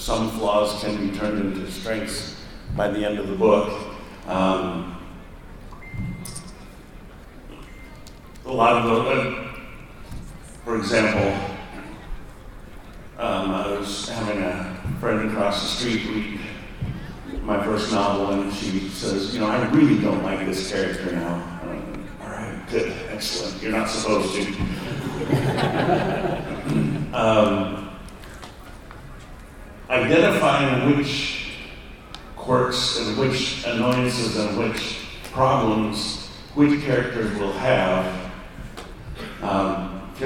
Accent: American